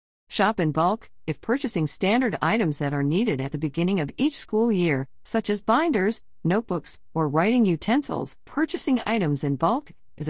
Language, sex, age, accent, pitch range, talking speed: English, female, 50-69, American, 140-195 Hz, 170 wpm